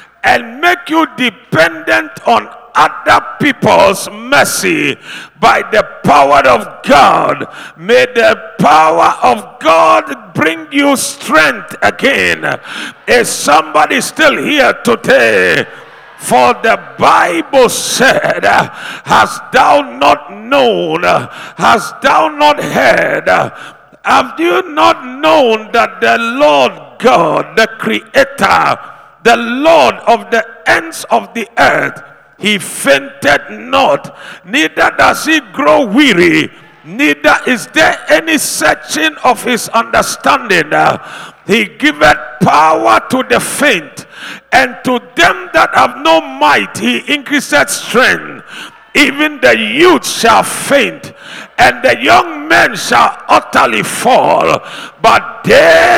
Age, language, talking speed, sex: 60-79, English, 110 wpm, male